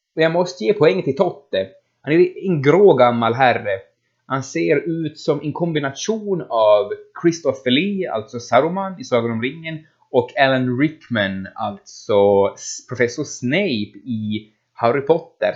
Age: 20-39